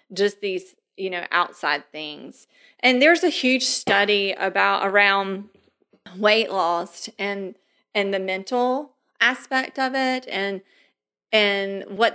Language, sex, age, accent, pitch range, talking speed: English, female, 30-49, American, 190-235 Hz, 125 wpm